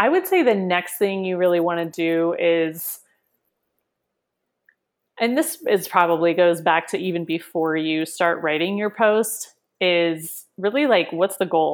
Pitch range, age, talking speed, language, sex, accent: 165-190 Hz, 30-49, 165 wpm, English, female, American